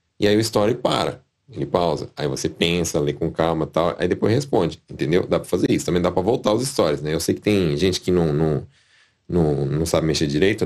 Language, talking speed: Portuguese, 240 wpm